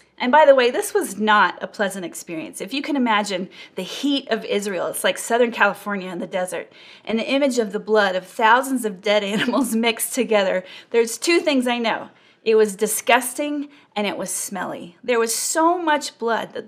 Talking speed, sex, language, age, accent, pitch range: 200 wpm, female, English, 30-49, American, 205-275 Hz